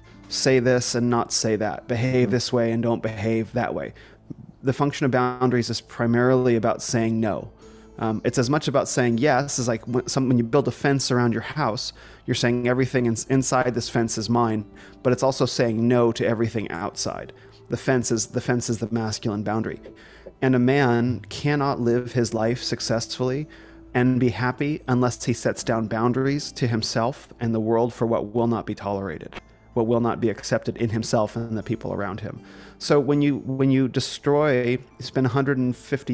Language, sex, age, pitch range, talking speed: English, male, 30-49, 115-130 Hz, 190 wpm